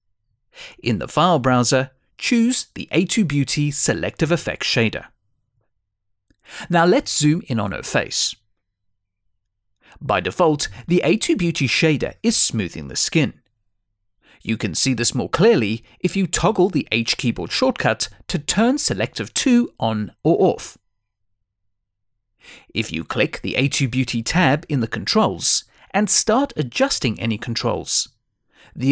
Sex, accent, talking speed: male, British, 125 wpm